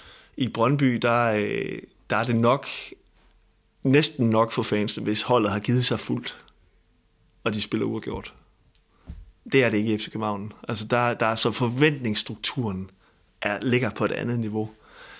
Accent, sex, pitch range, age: native, male, 110-125 Hz, 30-49